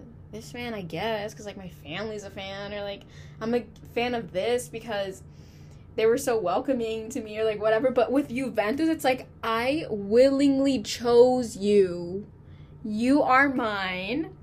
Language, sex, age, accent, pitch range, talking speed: English, female, 10-29, American, 205-260 Hz, 160 wpm